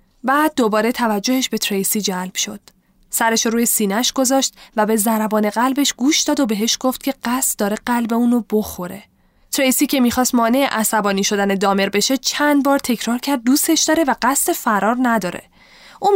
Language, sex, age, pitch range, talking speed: Persian, female, 10-29, 205-265 Hz, 170 wpm